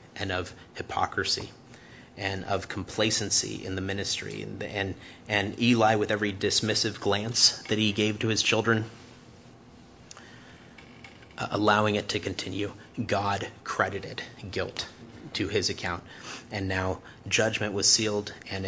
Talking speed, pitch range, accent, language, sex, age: 130 wpm, 100-115 Hz, American, English, male, 30-49